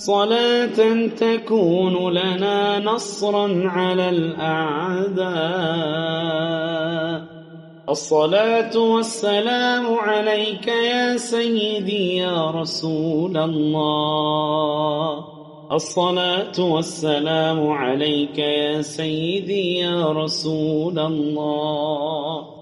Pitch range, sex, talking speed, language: 155-205 Hz, male, 60 wpm, Arabic